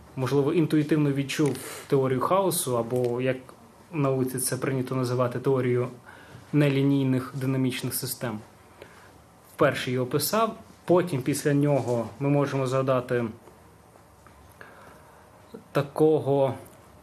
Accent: native